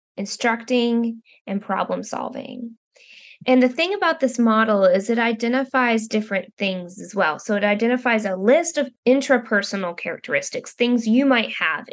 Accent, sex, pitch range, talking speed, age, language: American, female, 200-250 Hz, 145 wpm, 20-39, English